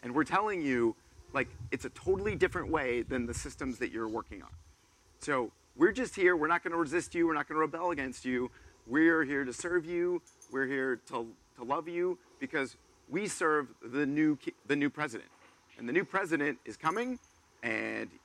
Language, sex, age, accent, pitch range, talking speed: English, male, 40-59, American, 125-175 Hz, 195 wpm